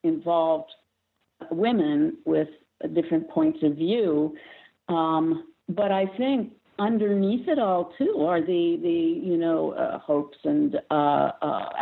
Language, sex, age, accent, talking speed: English, female, 50-69, American, 125 wpm